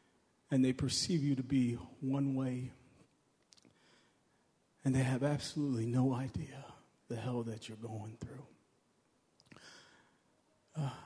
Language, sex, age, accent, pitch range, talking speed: English, male, 30-49, American, 115-135 Hz, 115 wpm